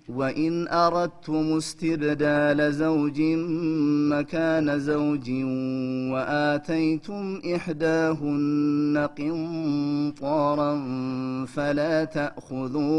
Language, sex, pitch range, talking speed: Amharic, male, 130-160 Hz, 70 wpm